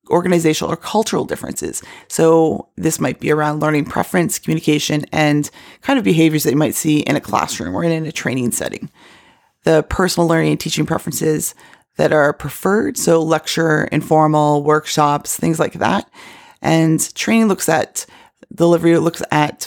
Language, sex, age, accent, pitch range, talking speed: English, female, 30-49, American, 155-185 Hz, 155 wpm